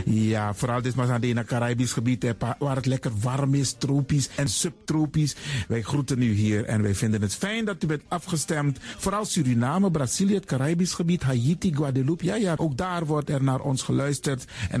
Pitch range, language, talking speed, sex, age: 125-180 Hz, Dutch, 190 wpm, male, 50-69